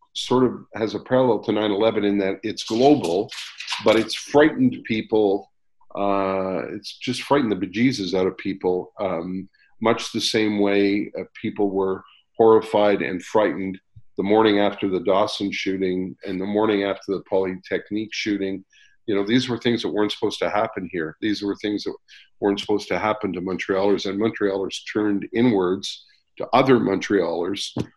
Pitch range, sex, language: 100-110 Hz, male, English